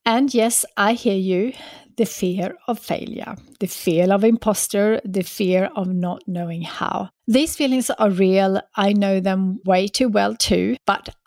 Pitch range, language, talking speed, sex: 190-235 Hz, English, 165 wpm, female